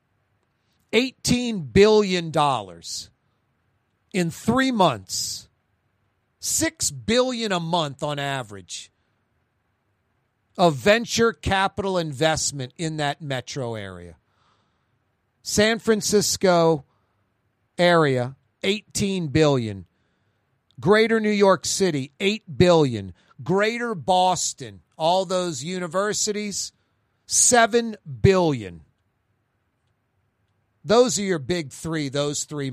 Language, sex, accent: English, male, American